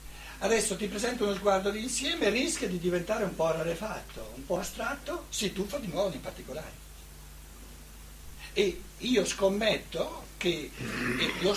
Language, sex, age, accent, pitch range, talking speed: Italian, male, 60-79, native, 175-225 Hz, 145 wpm